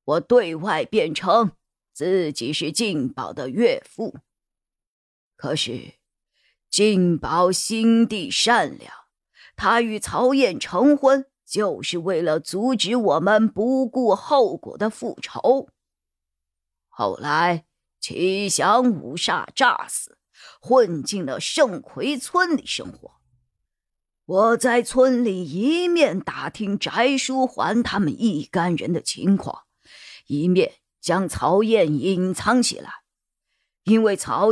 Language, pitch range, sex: Chinese, 160-235 Hz, female